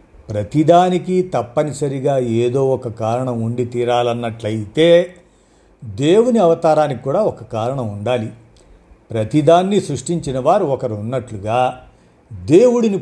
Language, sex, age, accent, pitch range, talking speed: Telugu, male, 50-69, native, 115-160 Hz, 90 wpm